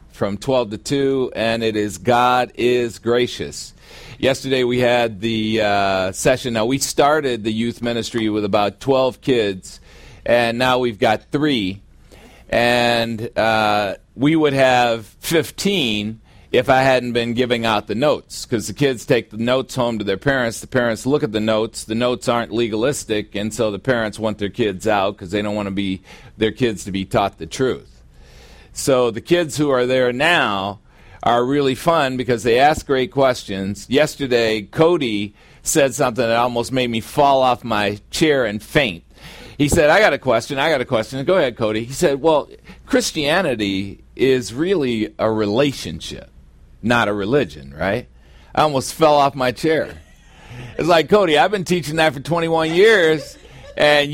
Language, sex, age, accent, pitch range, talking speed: English, male, 40-59, American, 110-140 Hz, 175 wpm